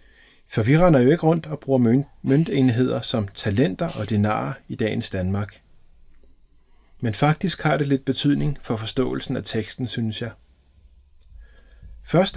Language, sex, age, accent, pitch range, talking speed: Danish, male, 30-49, native, 105-145 Hz, 140 wpm